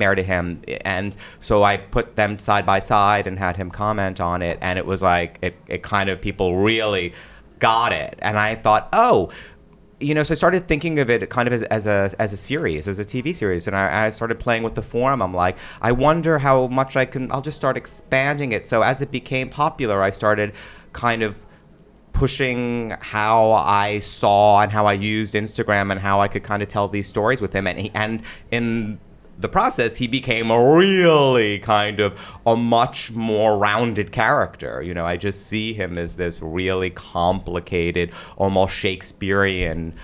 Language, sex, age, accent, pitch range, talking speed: English, male, 30-49, American, 95-120 Hz, 195 wpm